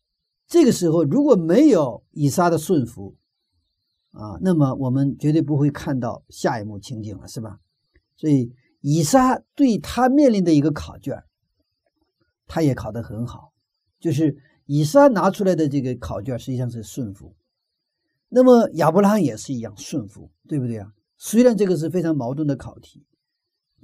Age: 50-69